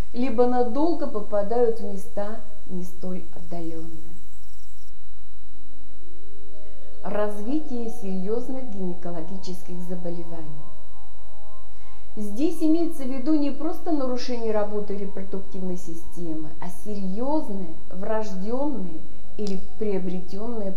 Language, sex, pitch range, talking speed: Russian, female, 165-230 Hz, 80 wpm